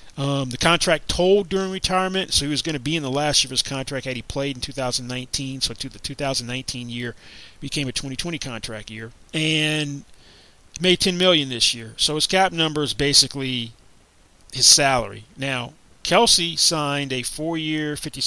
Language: English